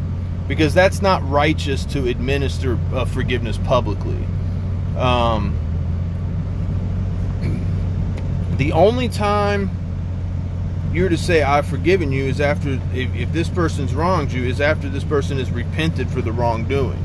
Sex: male